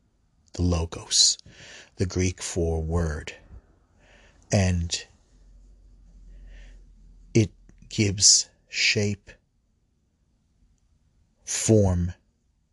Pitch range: 80-100 Hz